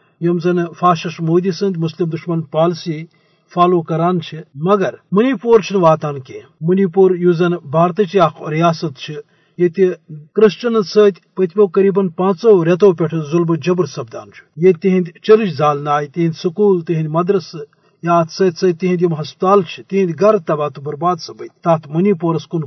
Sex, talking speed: male, 145 wpm